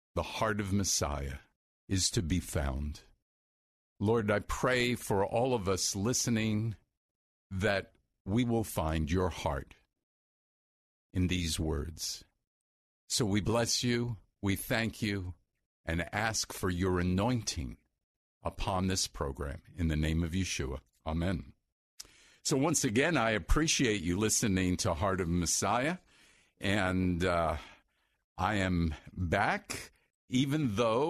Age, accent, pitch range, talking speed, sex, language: 50-69, American, 90-115 Hz, 125 wpm, male, English